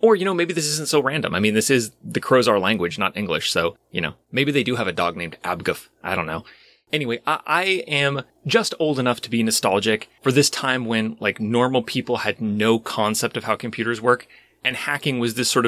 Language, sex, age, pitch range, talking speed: English, male, 30-49, 115-150 Hz, 235 wpm